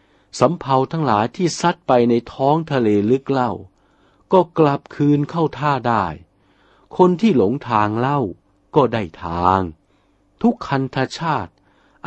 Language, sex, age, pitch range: Thai, male, 60-79, 95-145 Hz